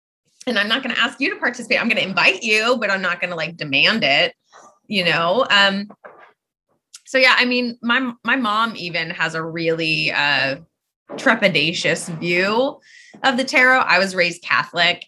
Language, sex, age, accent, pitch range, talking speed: English, female, 20-39, American, 170-225 Hz, 185 wpm